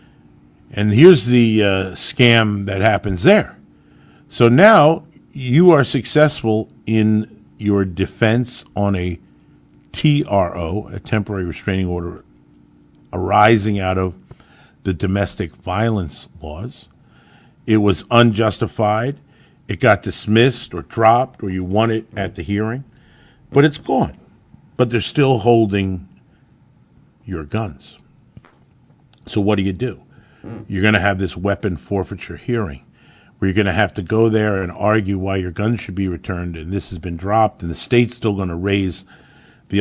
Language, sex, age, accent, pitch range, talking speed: English, male, 50-69, American, 95-120 Hz, 145 wpm